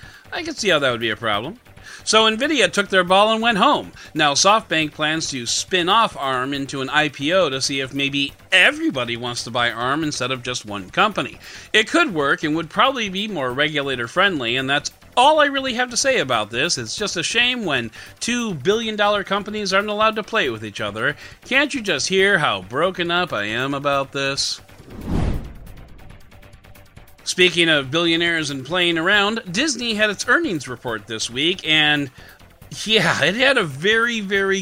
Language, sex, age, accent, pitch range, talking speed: English, male, 40-59, American, 130-210 Hz, 185 wpm